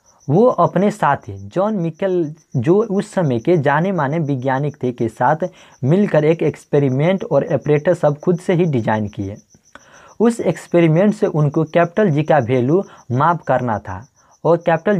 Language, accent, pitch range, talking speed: Hindi, native, 135-180 Hz, 160 wpm